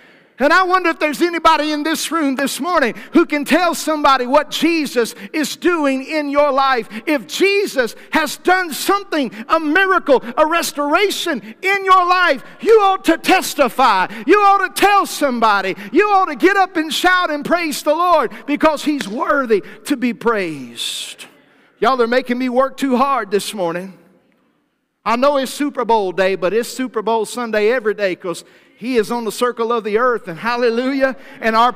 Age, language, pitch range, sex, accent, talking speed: 50-69, English, 230-305 Hz, male, American, 180 wpm